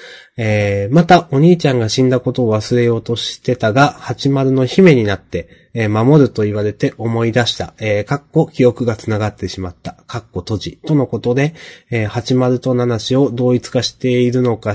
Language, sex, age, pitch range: Japanese, male, 20-39, 110-135 Hz